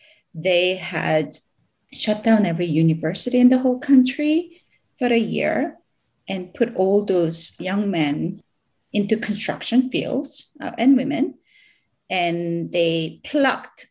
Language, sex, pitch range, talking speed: English, female, 170-245 Hz, 120 wpm